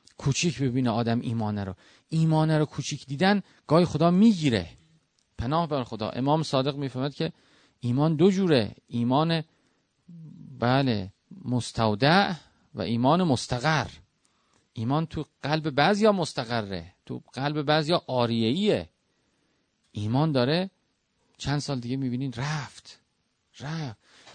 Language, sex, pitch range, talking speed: Persian, male, 135-190 Hz, 110 wpm